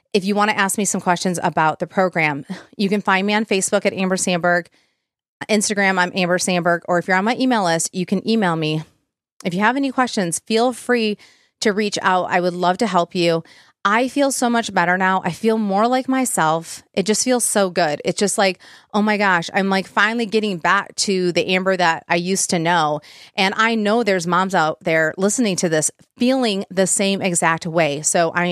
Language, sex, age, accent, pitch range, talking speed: English, female, 30-49, American, 175-215 Hz, 215 wpm